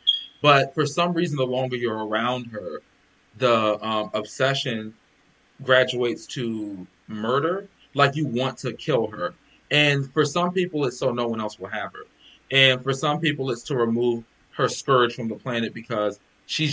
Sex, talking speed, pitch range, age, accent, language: male, 170 wpm, 115-155 Hz, 20-39, American, English